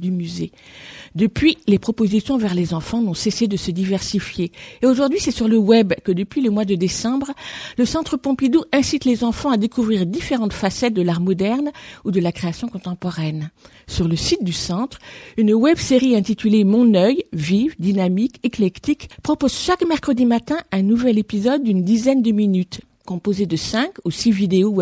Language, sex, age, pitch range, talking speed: French, female, 50-69, 180-250 Hz, 180 wpm